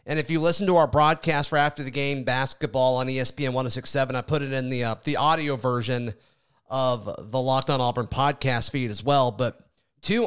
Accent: American